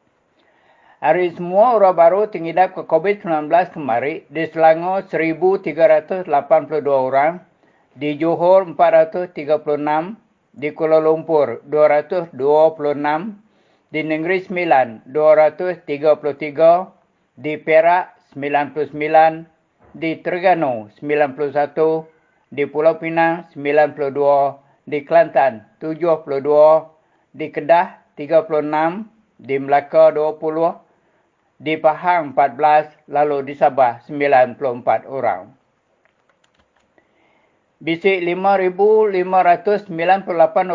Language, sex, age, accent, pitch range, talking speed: English, male, 50-69, Indonesian, 145-170 Hz, 75 wpm